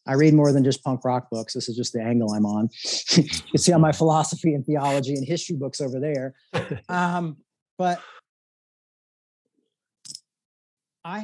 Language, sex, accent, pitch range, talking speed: English, male, American, 130-155 Hz, 160 wpm